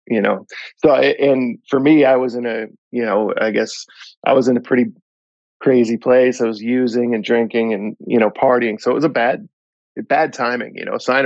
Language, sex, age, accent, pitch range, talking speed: English, male, 20-39, American, 110-125 Hz, 215 wpm